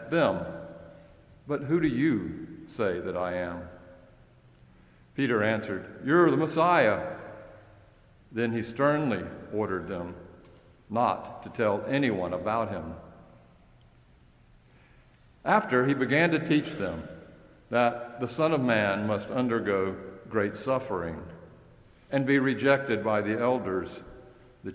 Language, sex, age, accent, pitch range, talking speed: English, male, 60-79, American, 90-125 Hz, 115 wpm